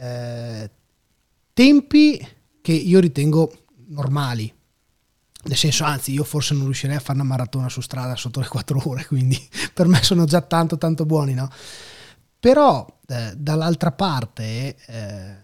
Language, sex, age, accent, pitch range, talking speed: Italian, male, 30-49, native, 125-160 Hz, 140 wpm